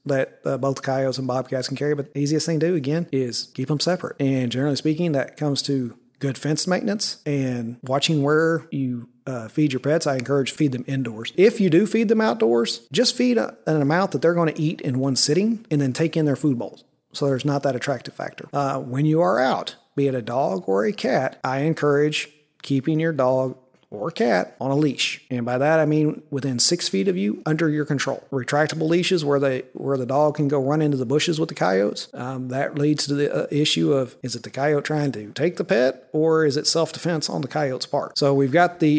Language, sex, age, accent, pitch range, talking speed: English, male, 40-59, American, 130-155 Hz, 235 wpm